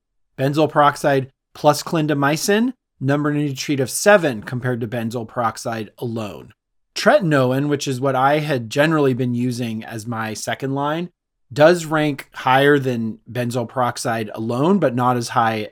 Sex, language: male, English